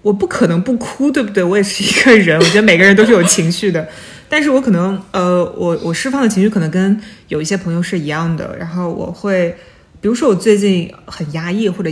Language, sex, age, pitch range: Chinese, female, 20-39, 170-205 Hz